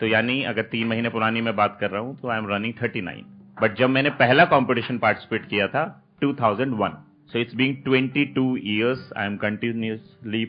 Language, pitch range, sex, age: Hindi, 100-130 Hz, male, 30-49